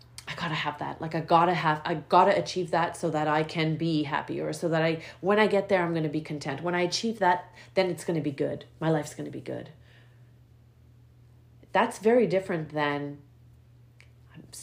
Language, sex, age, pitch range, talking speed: English, female, 40-59, 125-170 Hz, 225 wpm